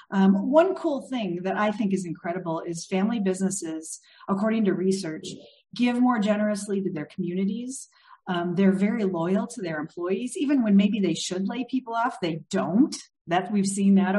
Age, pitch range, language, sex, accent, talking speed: 40-59, 175-215 Hz, English, female, American, 175 wpm